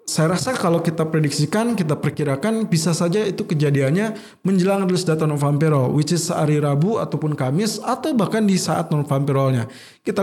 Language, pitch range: Indonesian, 150-200 Hz